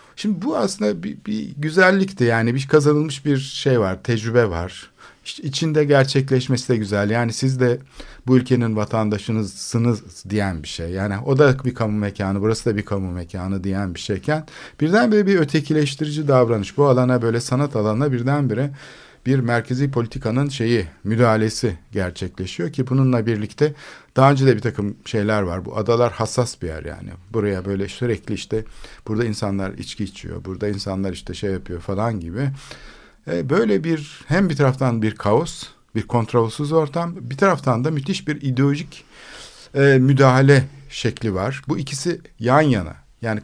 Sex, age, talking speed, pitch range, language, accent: male, 50-69, 155 wpm, 105-140 Hz, Turkish, native